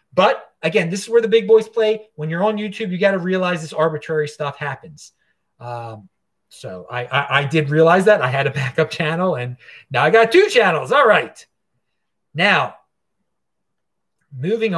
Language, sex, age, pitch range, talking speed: English, male, 40-59, 135-180 Hz, 180 wpm